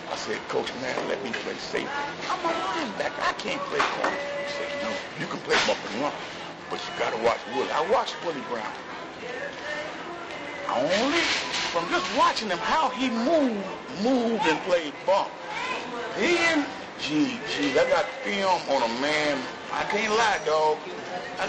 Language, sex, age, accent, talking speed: English, male, 60-79, American, 165 wpm